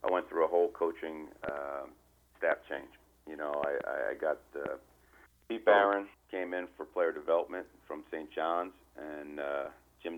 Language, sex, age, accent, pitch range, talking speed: English, male, 40-59, American, 75-90 Hz, 165 wpm